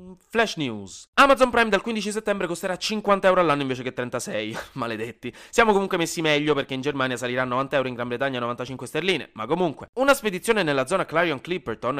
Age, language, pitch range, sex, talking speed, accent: 20-39, Italian, 125-180 Hz, male, 185 wpm, native